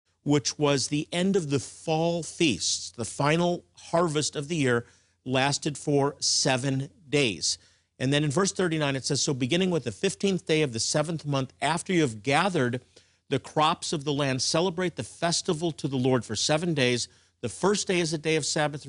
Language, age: English, 50-69